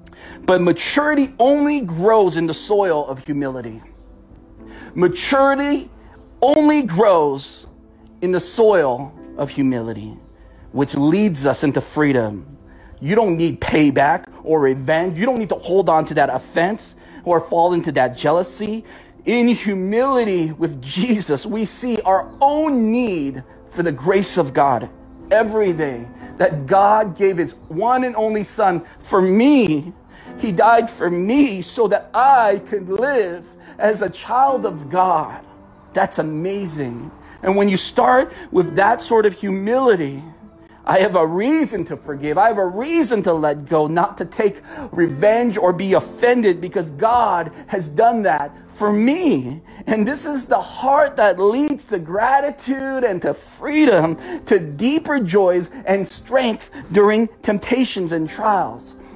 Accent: American